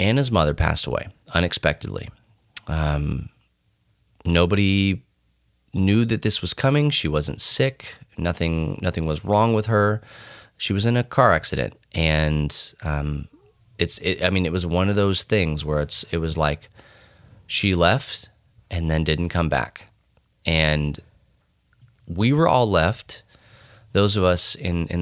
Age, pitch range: 30-49, 80-110 Hz